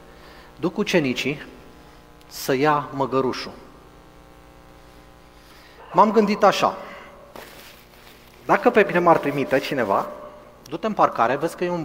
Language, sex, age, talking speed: Romanian, male, 30-49, 105 wpm